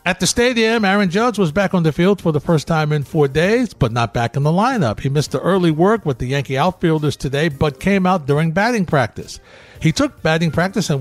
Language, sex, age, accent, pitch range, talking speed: English, male, 60-79, American, 140-185 Hz, 240 wpm